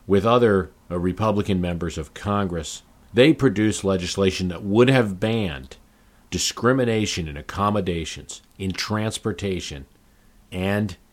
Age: 50-69